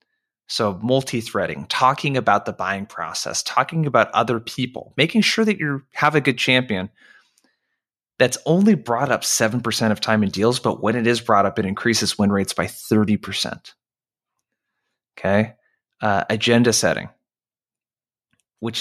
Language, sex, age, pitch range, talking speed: English, male, 20-39, 100-125 Hz, 145 wpm